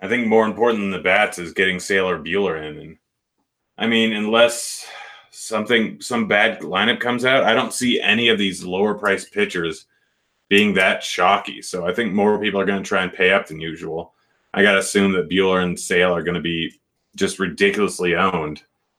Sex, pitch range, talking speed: male, 90-110 Hz, 195 wpm